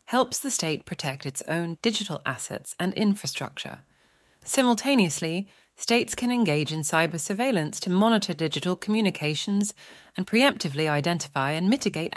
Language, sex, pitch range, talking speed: English, female, 145-195 Hz, 130 wpm